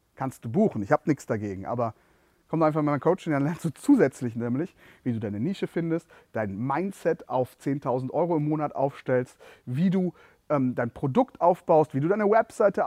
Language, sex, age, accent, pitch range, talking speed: German, male, 30-49, German, 135-190 Hz, 195 wpm